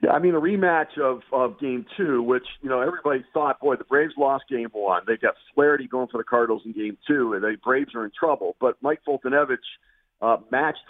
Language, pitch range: English, 115-140 Hz